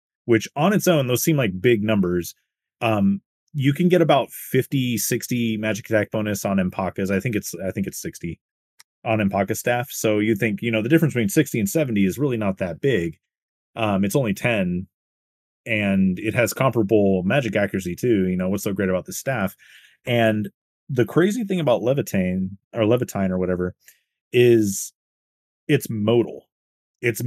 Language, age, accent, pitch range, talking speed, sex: English, 30-49, American, 100-145 Hz, 175 wpm, male